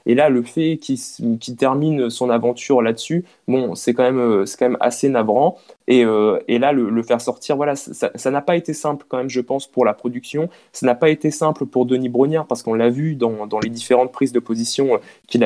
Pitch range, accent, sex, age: 120-150 Hz, French, male, 20-39